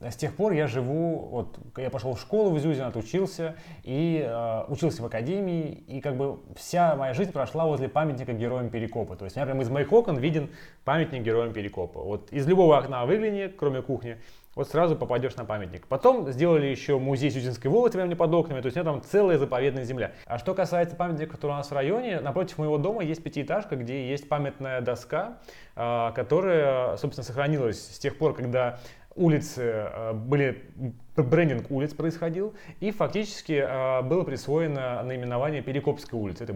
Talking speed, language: 180 wpm, Russian